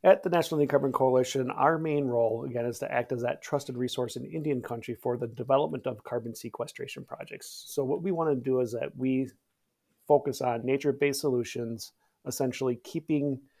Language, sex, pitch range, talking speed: English, male, 120-140 Hz, 180 wpm